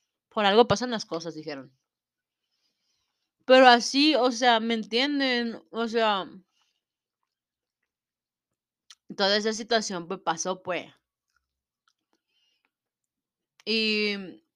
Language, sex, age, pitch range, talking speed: Spanish, female, 30-49, 180-240 Hz, 85 wpm